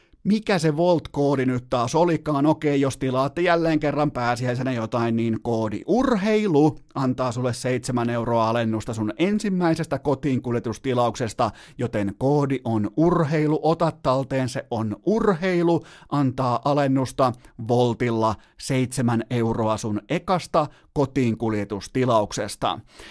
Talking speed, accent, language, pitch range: 105 wpm, native, Finnish, 120-150 Hz